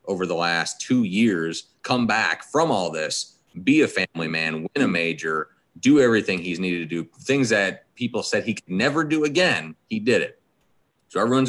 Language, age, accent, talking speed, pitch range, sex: English, 30-49, American, 195 wpm, 85-115 Hz, male